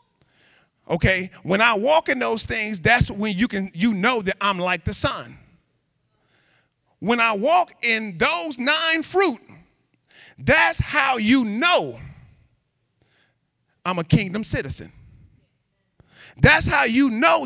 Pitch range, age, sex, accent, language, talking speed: 190-295 Hz, 40-59, male, American, English, 125 wpm